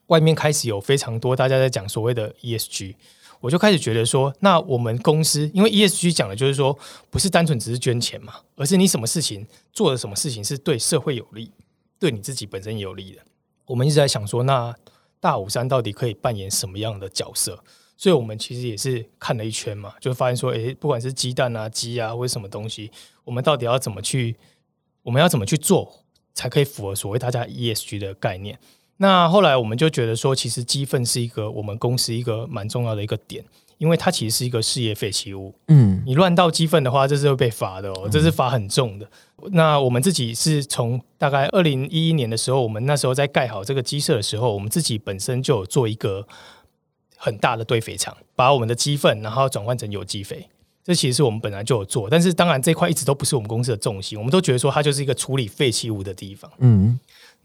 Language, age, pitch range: Chinese, 20-39, 115-150 Hz